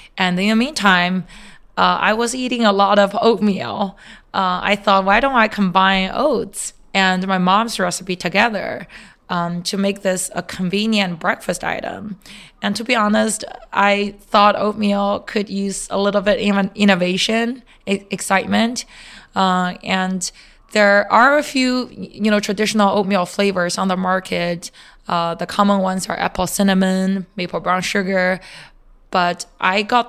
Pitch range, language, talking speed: 180-210 Hz, English, 150 wpm